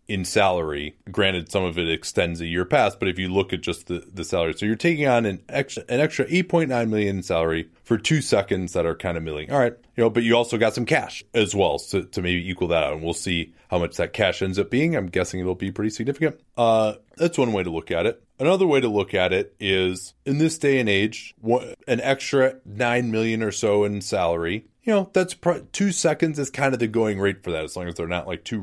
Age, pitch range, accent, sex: 30-49, 90-120 Hz, American, male